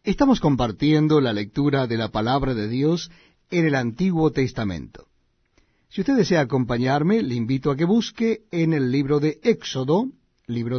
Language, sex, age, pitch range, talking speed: Spanish, male, 50-69, 125-185 Hz, 155 wpm